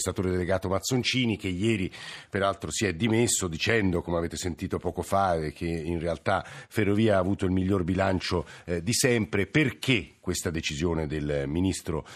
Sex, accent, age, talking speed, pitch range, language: male, native, 50-69, 160 wpm, 95-120 Hz, Italian